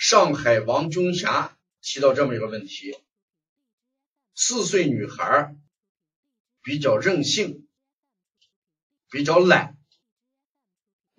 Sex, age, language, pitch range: male, 50-69, Chinese, 140-225 Hz